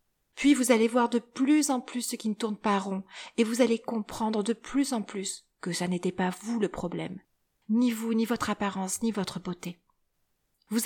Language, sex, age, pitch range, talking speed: French, female, 40-59, 190-235 Hz, 210 wpm